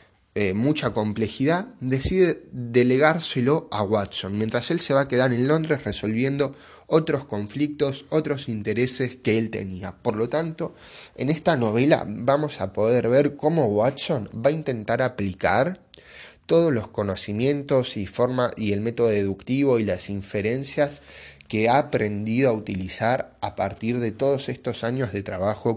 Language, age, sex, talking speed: Spanish, 10-29, male, 145 wpm